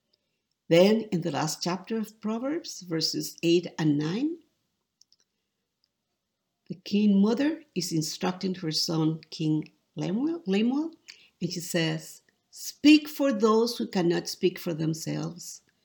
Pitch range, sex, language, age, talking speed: 170-250 Hz, female, English, 50-69, 120 wpm